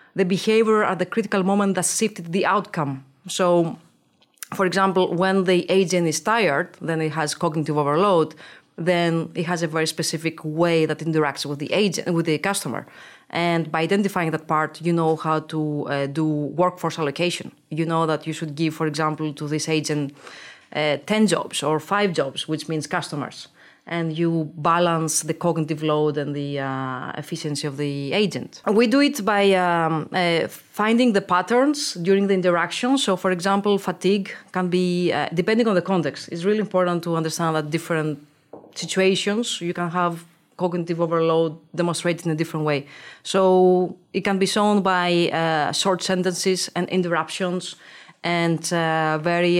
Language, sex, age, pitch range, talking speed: English, female, 30-49, 155-185 Hz, 165 wpm